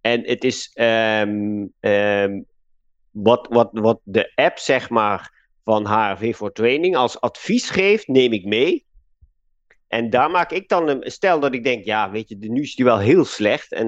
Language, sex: Dutch, male